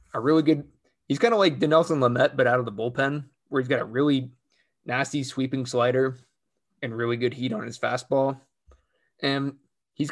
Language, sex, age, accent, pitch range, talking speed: English, male, 20-39, American, 125-150 Hz, 185 wpm